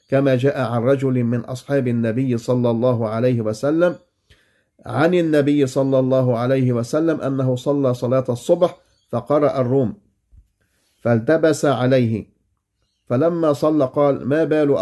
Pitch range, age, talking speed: 120-145 Hz, 50-69, 120 wpm